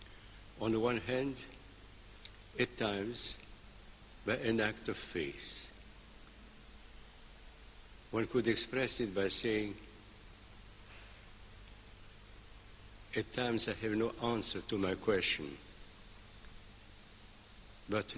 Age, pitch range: 60-79, 100-115 Hz